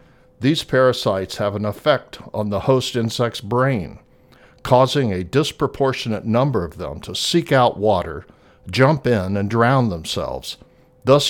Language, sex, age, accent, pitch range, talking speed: English, male, 60-79, American, 105-130 Hz, 140 wpm